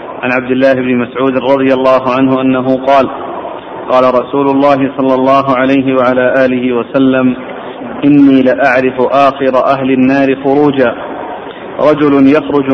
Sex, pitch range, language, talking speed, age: male, 135-145 Hz, Arabic, 125 wpm, 50-69